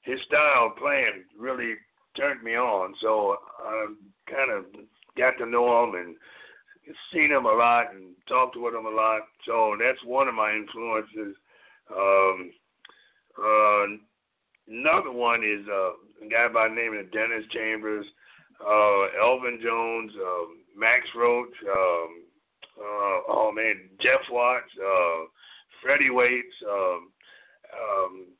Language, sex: English, male